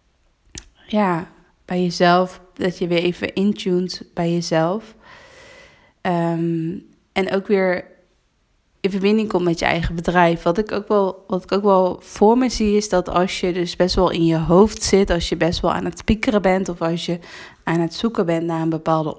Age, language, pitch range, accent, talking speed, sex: 20-39, Dutch, 165-195 Hz, Dutch, 180 wpm, female